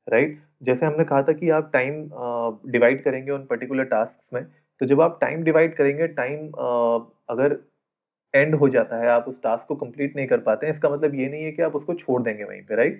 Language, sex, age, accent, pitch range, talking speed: Hindi, male, 30-49, native, 125-160 Hz, 235 wpm